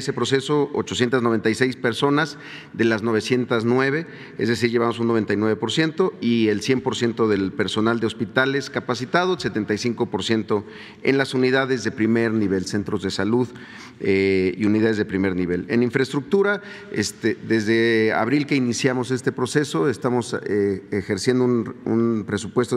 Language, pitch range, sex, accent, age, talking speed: Spanish, 110-135 Hz, male, Mexican, 40-59, 145 wpm